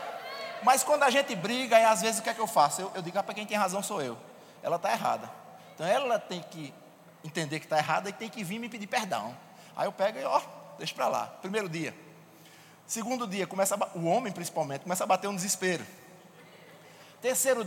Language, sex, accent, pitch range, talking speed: Portuguese, male, Brazilian, 160-215 Hz, 225 wpm